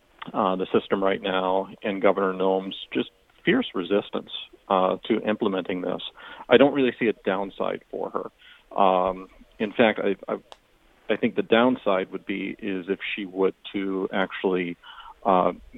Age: 40-59